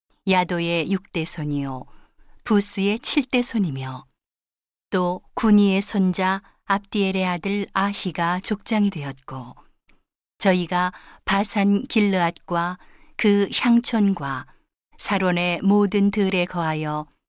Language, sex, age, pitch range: Korean, female, 40-59, 170-205 Hz